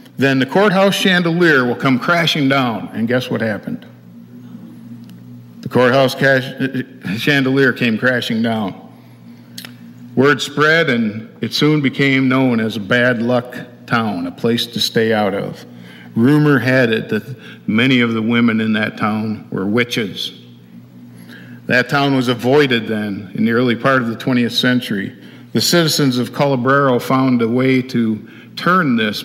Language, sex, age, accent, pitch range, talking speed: English, male, 50-69, American, 105-130 Hz, 150 wpm